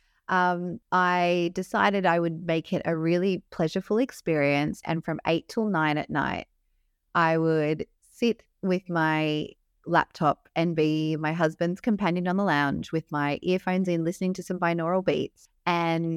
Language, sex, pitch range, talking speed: English, female, 160-190 Hz, 155 wpm